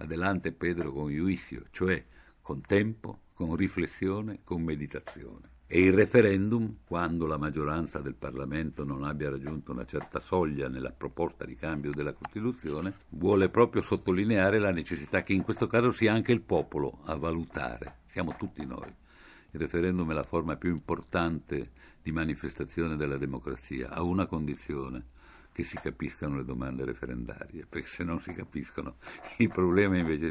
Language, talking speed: Italian, 150 wpm